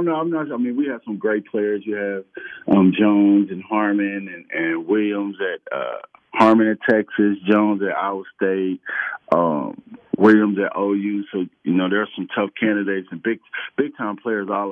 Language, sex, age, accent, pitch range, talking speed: English, male, 40-59, American, 95-110 Hz, 190 wpm